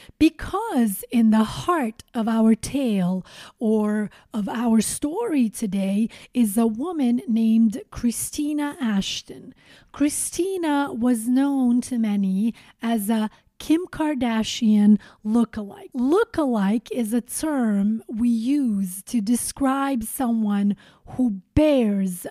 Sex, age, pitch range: female, 30-49, 215-280 Hz